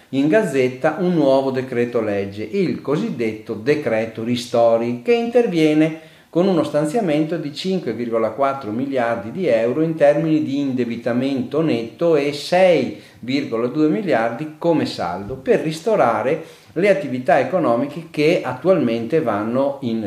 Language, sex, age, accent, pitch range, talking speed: Italian, male, 40-59, native, 115-170 Hz, 115 wpm